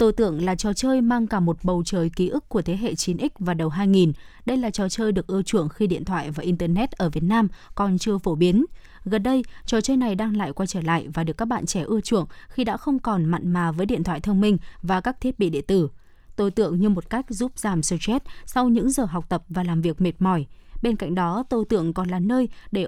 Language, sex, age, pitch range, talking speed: Vietnamese, female, 20-39, 180-230 Hz, 260 wpm